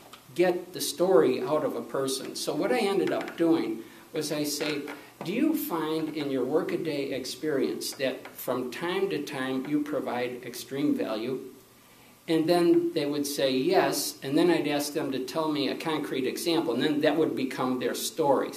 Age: 60-79